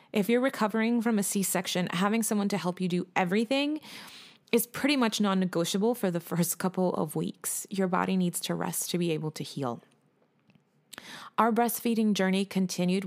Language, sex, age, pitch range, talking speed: English, female, 30-49, 180-225 Hz, 170 wpm